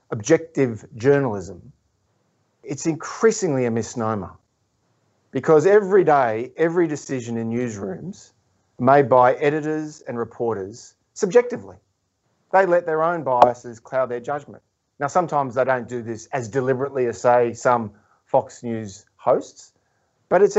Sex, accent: male, Australian